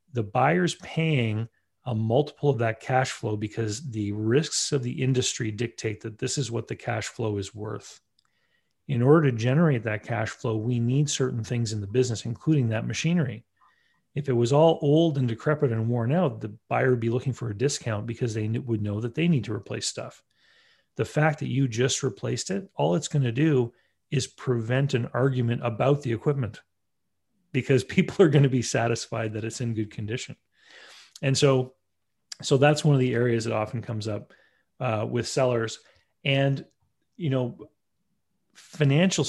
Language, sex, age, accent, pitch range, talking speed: English, male, 40-59, Canadian, 110-135 Hz, 185 wpm